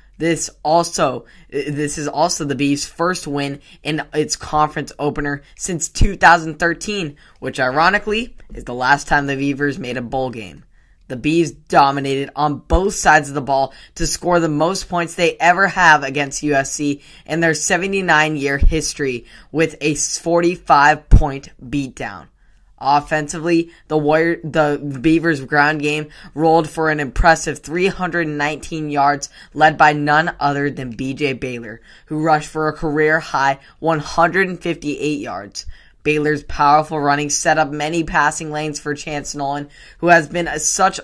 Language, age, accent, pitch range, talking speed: English, 10-29, American, 145-165 Hz, 140 wpm